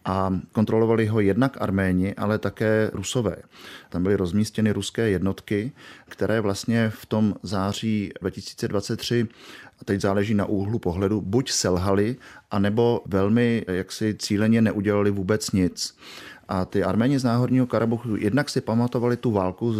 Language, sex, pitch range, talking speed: Czech, male, 95-115 Hz, 140 wpm